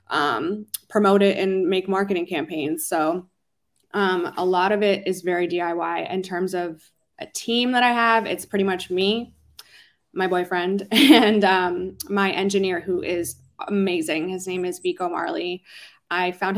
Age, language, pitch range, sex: 20-39, English, 175-200 Hz, female